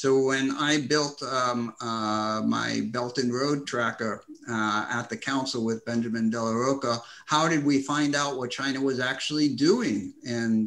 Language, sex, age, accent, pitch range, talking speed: English, male, 50-69, American, 110-140 Hz, 170 wpm